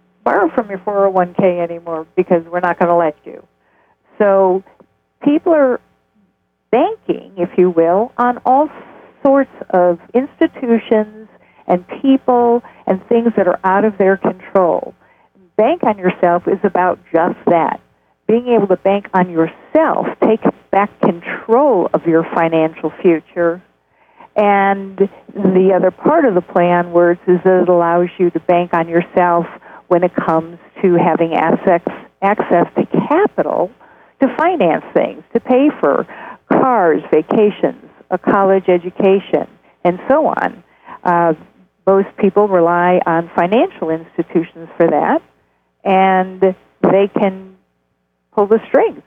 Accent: American